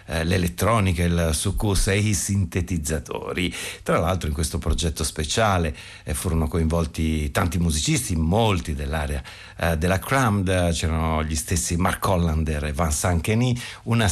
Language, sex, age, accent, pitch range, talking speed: Italian, male, 50-69, native, 80-110 Hz, 125 wpm